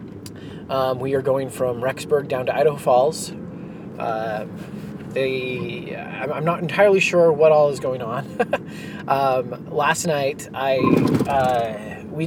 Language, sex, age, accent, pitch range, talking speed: English, male, 30-49, American, 130-185 Hz, 130 wpm